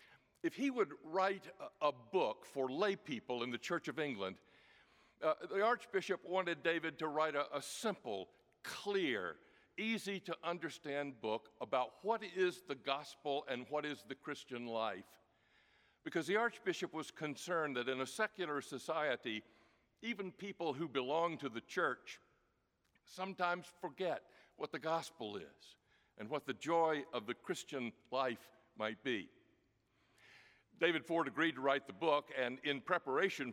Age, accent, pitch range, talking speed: 60-79, American, 135-185 Hz, 145 wpm